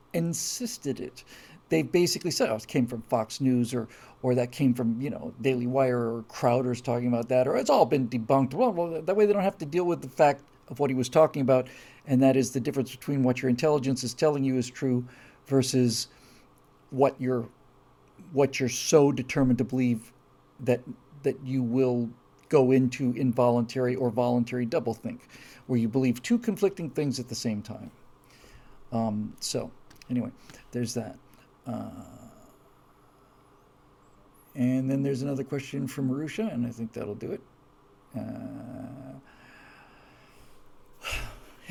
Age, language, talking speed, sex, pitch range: 50-69, English, 160 wpm, male, 125-150 Hz